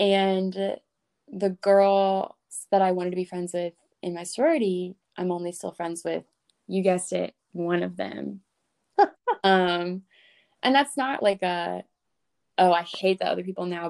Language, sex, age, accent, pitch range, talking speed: English, female, 20-39, American, 175-195 Hz, 160 wpm